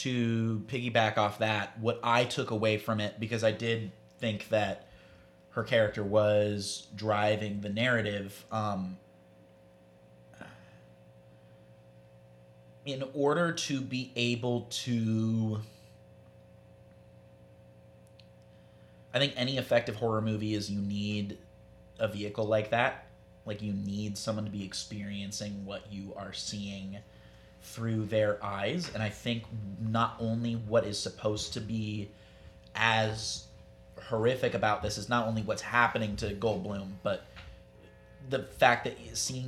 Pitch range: 90-115 Hz